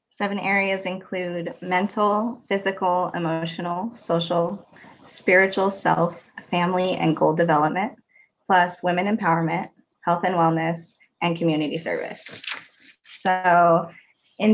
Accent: American